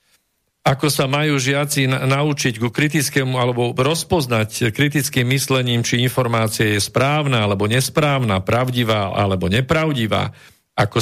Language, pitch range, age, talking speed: Slovak, 110-140 Hz, 50-69, 115 wpm